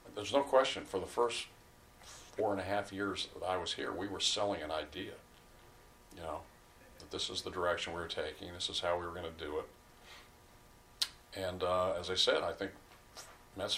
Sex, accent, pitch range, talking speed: male, American, 85-100 Hz, 205 wpm